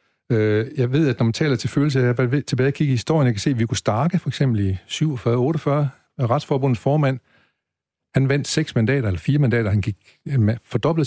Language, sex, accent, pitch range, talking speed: Danish, male, native, 105-140 Hz, 215 wpm